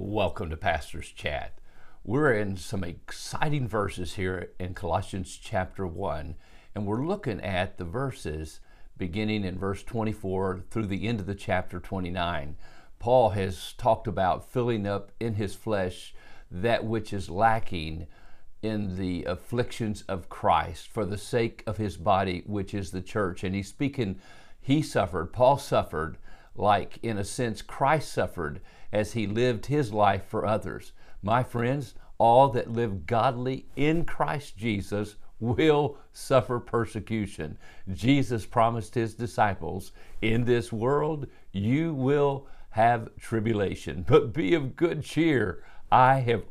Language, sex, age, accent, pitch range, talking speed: English, male, 50-69, American, 95-120 Hz, 140 wpm